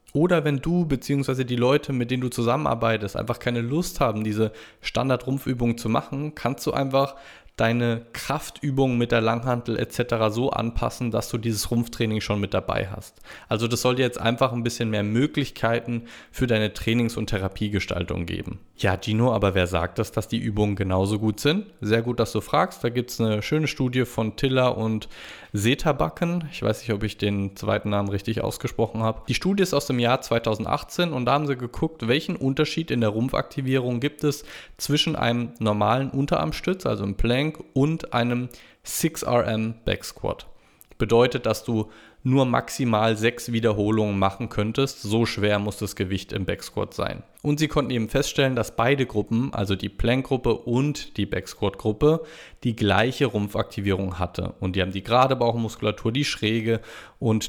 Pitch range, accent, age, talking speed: 105-130 Hz, German, 20-39, 170 wpm